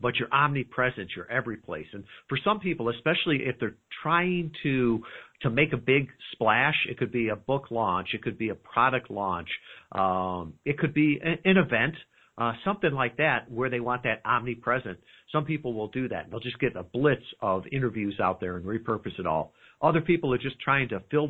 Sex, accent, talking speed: male, American, 210 wpm